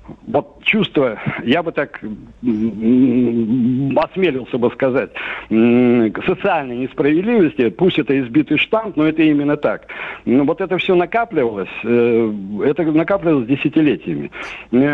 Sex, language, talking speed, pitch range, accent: male, Russian, 105 wpm, 125-170 Hz, native